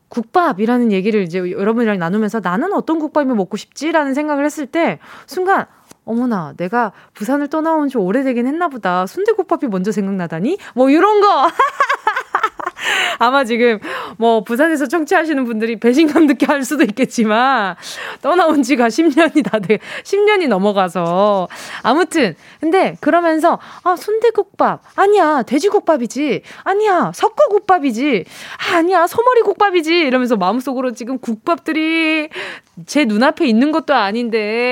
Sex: female